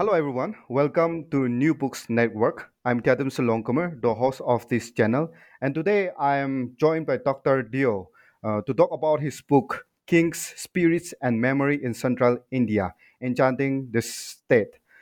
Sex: male